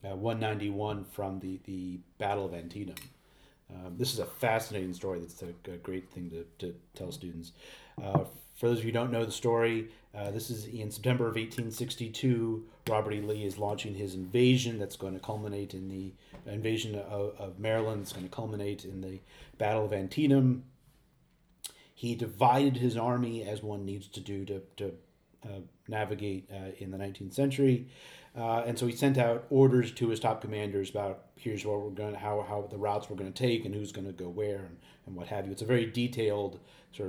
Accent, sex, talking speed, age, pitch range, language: American, male, 195 wpm, 30-49, 95-120 Hz, English